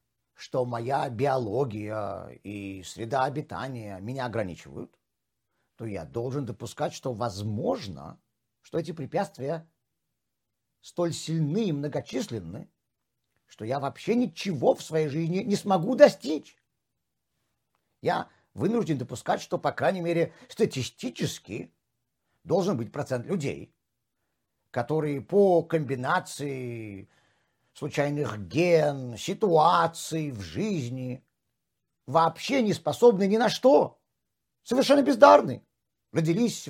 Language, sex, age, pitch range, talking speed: Russian, male, 50-69, 130-195 Hz, 100 wpm